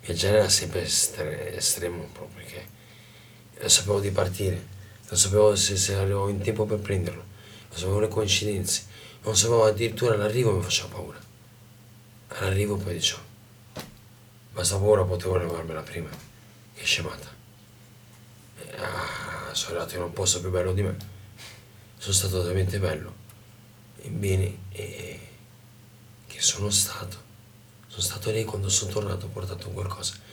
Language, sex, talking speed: Italian, male, 150 wpm